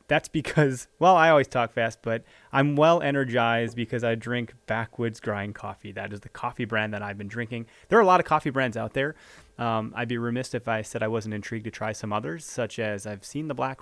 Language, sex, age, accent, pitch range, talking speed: English, male, 30-49, American, 110-130 Hz, 240 wpm